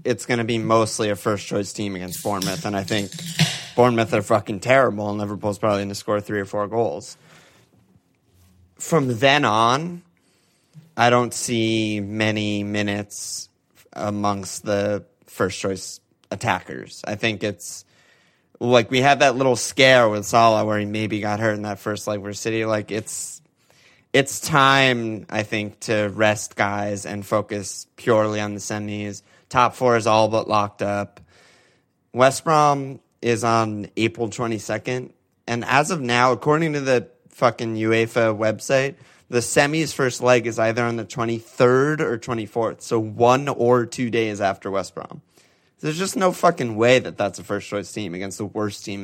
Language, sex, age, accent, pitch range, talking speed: English, male, 30-49, American, 105-125 Hz, 165 wpm